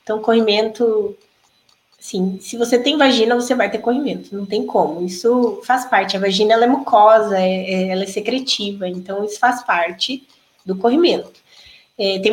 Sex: female